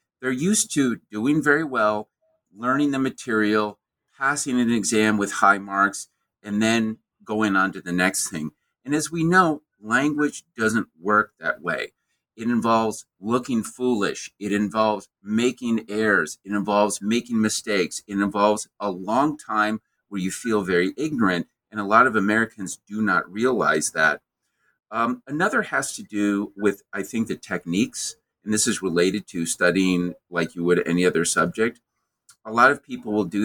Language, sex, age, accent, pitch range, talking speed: English, male, 50-69, American, 100-115 Hz, 165 wpm